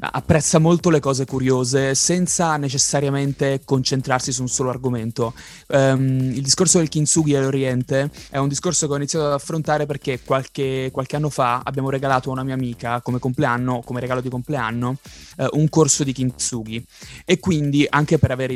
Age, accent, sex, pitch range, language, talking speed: 20-39, native, male, 125-150 Hz, Italian, 165 wpm